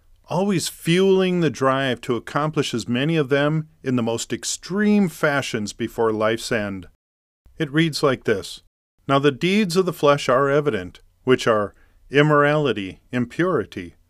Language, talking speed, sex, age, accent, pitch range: English, 145 wpm, male, 40-59, American, 105-155 Hz